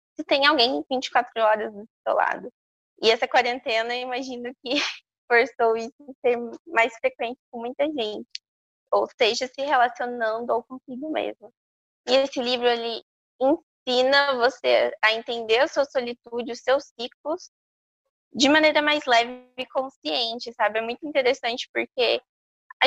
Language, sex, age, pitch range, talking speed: Portuguese, female, 20-39, 225-275 Hz, 145 wpm